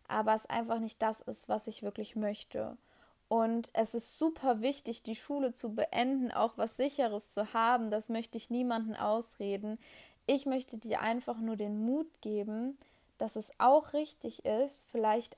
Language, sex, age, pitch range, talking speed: German, female, 20-39, 215-255 Hz, 170 wpm